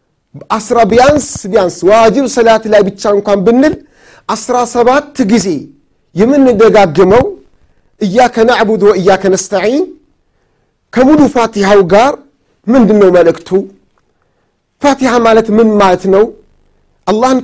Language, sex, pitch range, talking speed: Amharic, male, 205-250 Hz, 95 wpm